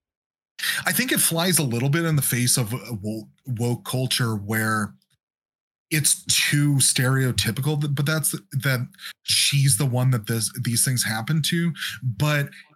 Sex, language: male, English